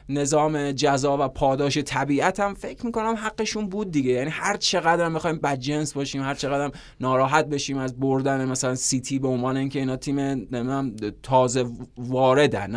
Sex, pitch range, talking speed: male, 135-170 Hz, 155 wpm